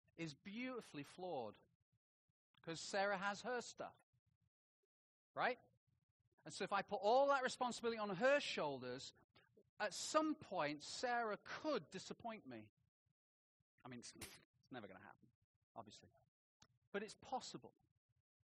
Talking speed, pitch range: 125 wpm, 130-205 Hz